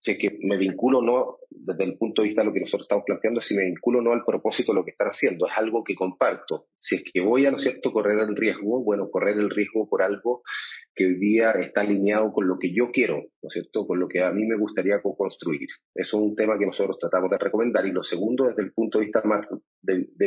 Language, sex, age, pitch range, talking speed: Spanish, male, 30-49, 100-135 Hz, 260 wpm